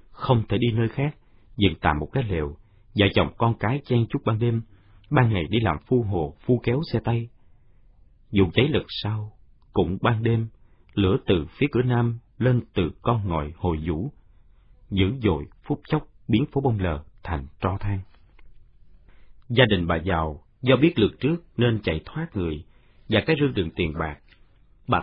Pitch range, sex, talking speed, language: 90-125 Hz, male, 180 wpm, Vietnamese